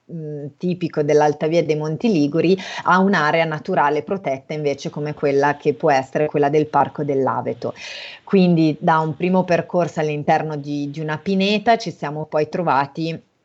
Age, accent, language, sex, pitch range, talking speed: 30-49, native, Italian, female, 150-170 Hz, 145 wpm